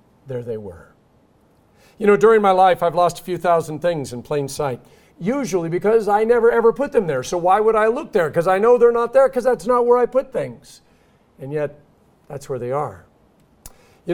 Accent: American